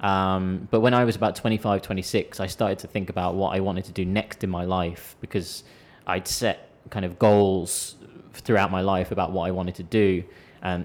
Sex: male